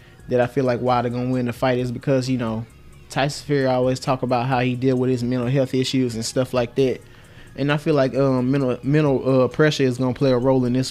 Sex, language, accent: male, English, American